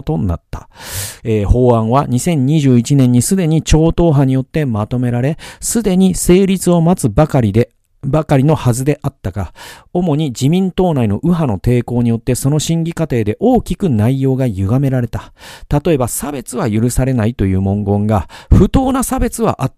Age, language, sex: 40-59, Japanese, male